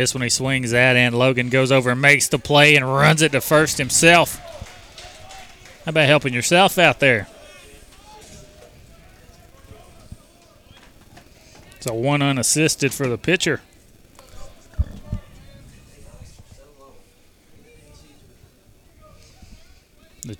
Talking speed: 95 wpm